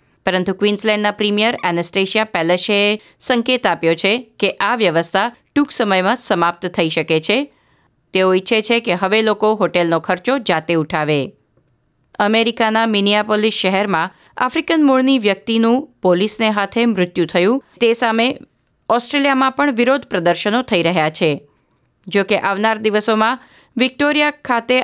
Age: 30-49